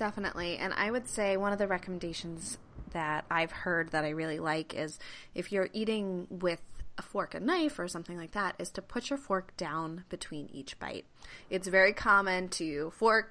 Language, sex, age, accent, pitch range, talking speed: English, female, 20-39, American, 170-220 Hz, 195 wpm